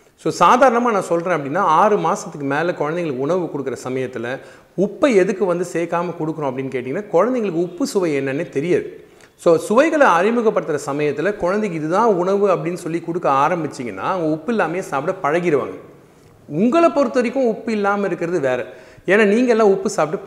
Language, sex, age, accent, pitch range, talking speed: Tamil, male, 40-59, native, 145-205 Hz, 155 wpm